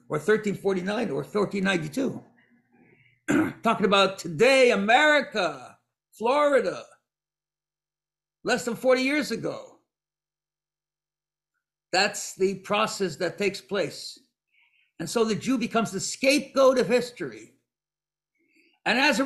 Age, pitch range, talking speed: 60-79, 190-245 Hz, 100 wpm